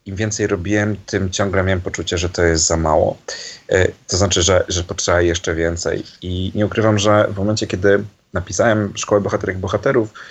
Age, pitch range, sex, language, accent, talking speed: 30-49, 95-110 Hz, male, Polish, native, 180 wpm